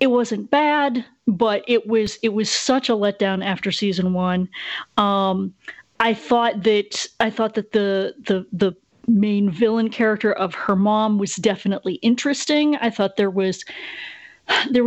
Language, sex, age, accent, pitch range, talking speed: English, female, 30-49, American, 195-230 Hz, 155 wpm